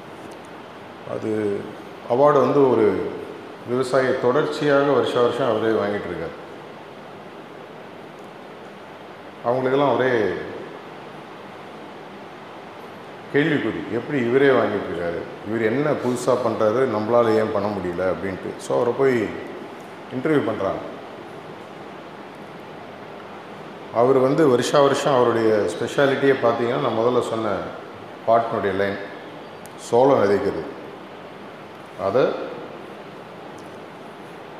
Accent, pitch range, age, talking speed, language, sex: native, 110-135 Hz, 30-49, 80 wpm, Tamil, male